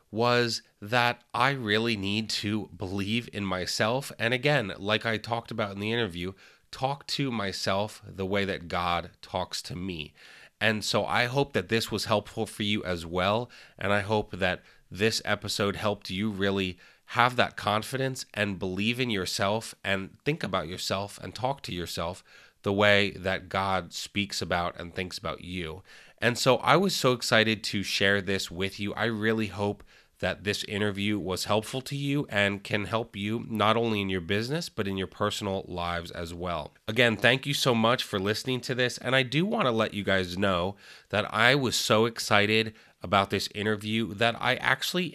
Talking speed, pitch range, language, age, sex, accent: 185 wpm, 95-120 Hz, English, 30-49, male, American